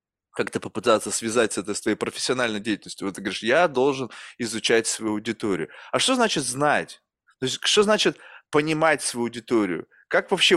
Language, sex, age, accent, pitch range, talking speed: Russian, male, 20-39, native, 125-195 Hz, 165 wpm